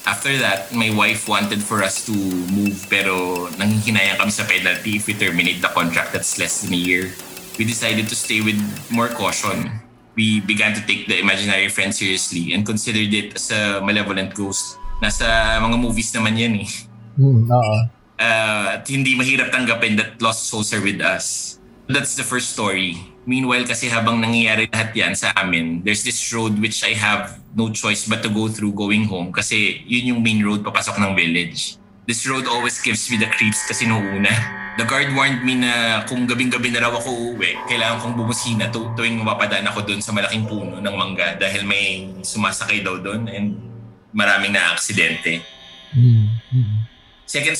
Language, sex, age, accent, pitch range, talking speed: Filipino, male, 20-39, native, 100-115 Hz, 160 wpm